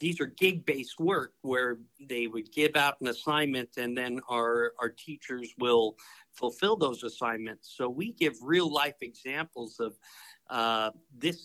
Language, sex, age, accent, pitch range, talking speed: English, male, 50-69, American, 120-155 Hz, 155 wpm